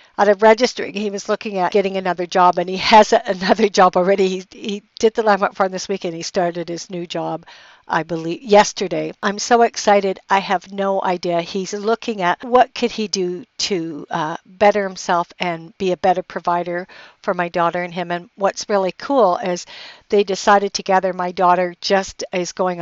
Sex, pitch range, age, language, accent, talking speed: female, 180-215 Hz, 60-79, English, American, 195 wpm